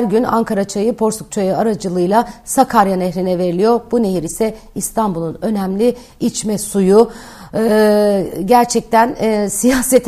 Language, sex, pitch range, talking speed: Turkish, female, 195-230 Hz, 125 wpm